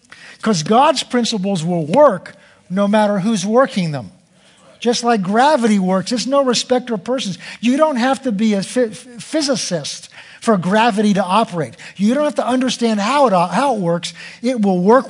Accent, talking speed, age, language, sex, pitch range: American, 185 wpm, 50-69, English, male, 195-255 Hz